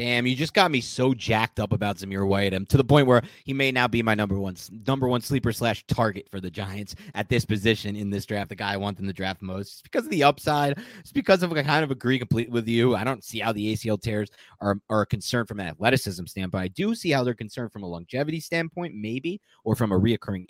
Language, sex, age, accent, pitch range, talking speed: English, male, 30-49, American, 90-120 Hz, 260 wpm